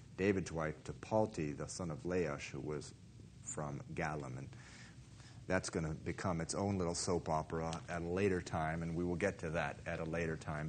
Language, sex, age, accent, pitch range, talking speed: English, male, 40-59, American, 90-115 Hz, 200 wpm